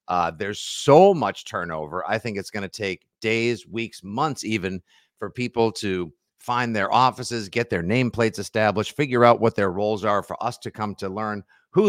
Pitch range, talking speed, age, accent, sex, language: 105-140 Hz, 190 wpm, 50-69, American, male, English